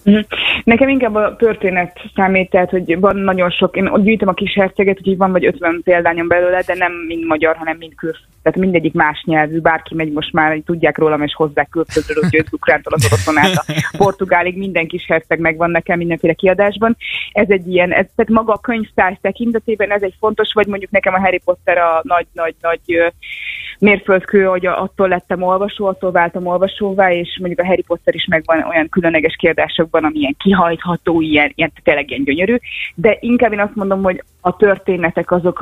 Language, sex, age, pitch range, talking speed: Hungarian, female, 20-39, 165-195 Hz, 180 wpm